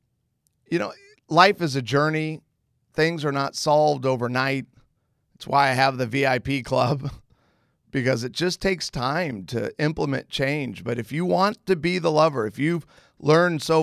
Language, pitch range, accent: English, 125-155 Hz, American